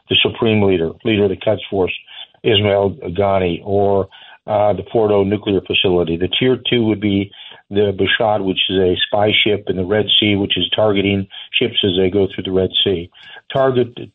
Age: 50-69